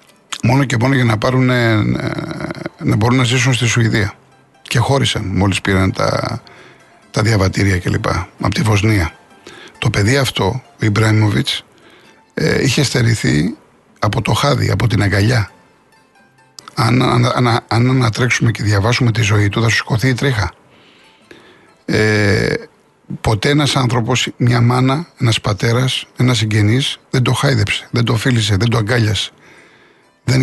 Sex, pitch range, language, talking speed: male, 110-130 Hz, Greek, 145 wpm